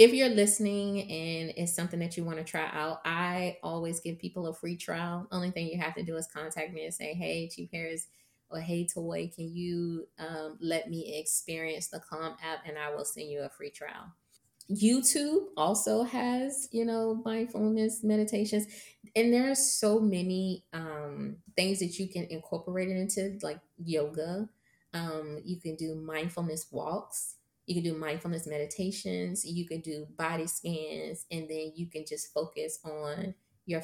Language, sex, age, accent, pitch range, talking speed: English, female, 20-39, American, 155-190 Hz, 175 wpm